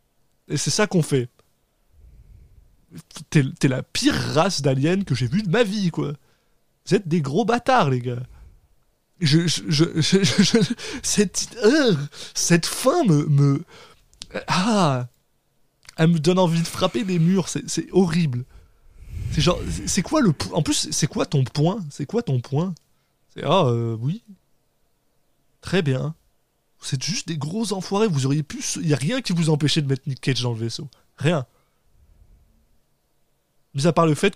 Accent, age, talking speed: French, 20-39, 170 wpm